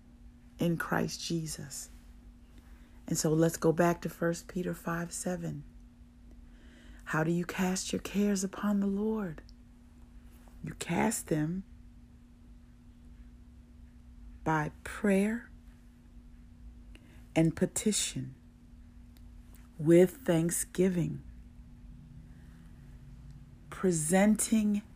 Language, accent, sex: English, American, female